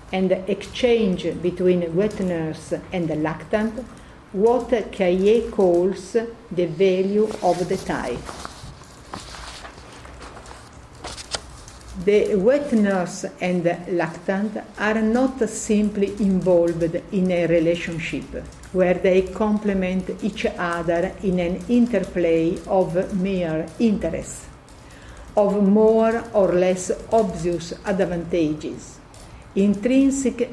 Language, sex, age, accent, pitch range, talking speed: English, female, 50-69, Italian, 175-220 Hz, 90 wpm